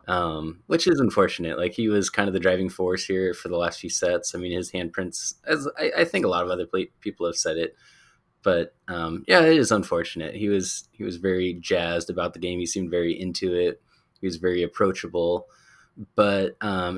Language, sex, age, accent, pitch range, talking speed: English, male, 20-39, American, 90-115 Hz, 215 wpm